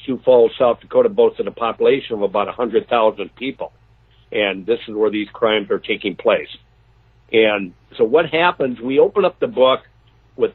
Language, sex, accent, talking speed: English, male, American, 170 wpm